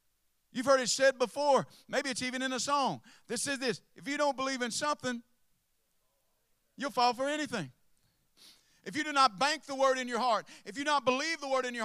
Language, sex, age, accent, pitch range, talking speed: English, male, 40-59, American, 165-280 Hz, 220 wpm